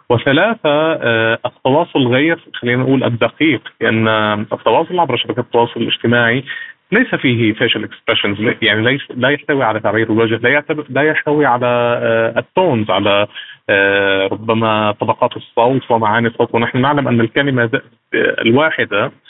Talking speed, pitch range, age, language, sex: 135 wpm, 110-140 Hz, 30-49, Arabic, male